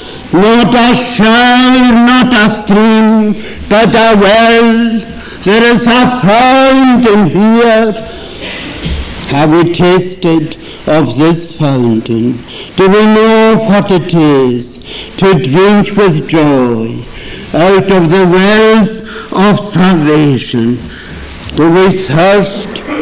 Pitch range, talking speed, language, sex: 160-225 Hz, 100 wpm, English, male